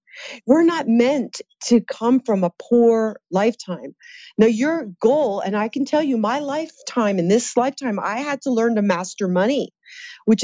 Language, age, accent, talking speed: English, 40-59, American, 170 wpm